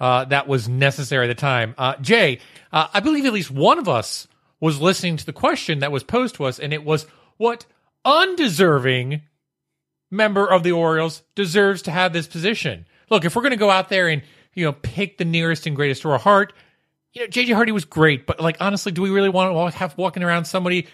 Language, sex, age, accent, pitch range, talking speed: English, male, 40-59, American, 155-220 Hz, 225 wpm